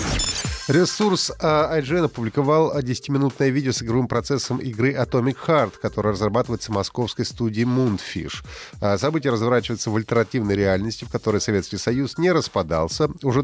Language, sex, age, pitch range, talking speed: Russian, male, 30-49, 95-135 Hz, 130 wpm